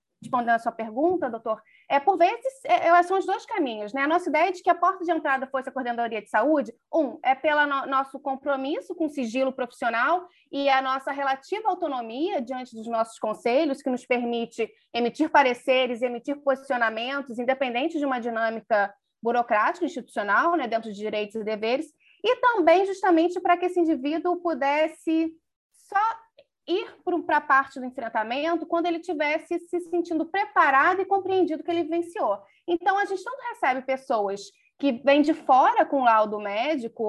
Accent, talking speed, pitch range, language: Brazilian, 170 wpm, 255-345 Hz, Portuguese